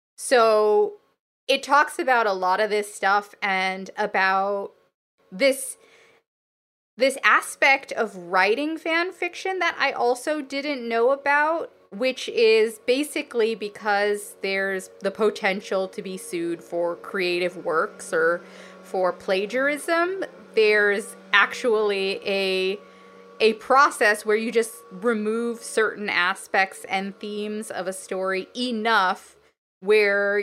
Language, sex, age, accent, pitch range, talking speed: English, female, 20-39, American, 195-275 Hz, 115 wpm